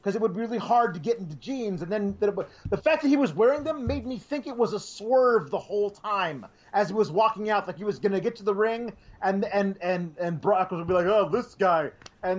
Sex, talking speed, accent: male, 275 wpm, American